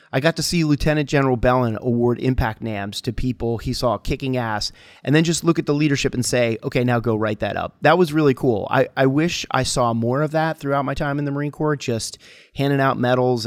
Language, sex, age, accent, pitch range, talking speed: English, male, 30-49, American, 115-135 Hz, 240 wpm